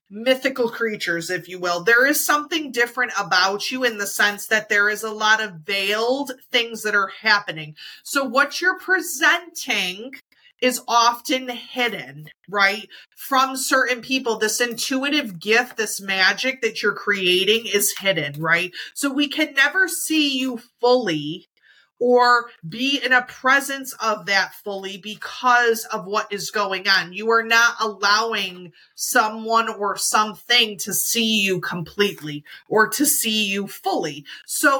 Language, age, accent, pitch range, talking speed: English, 30-49, American, 200-255 Hz, 145 wpm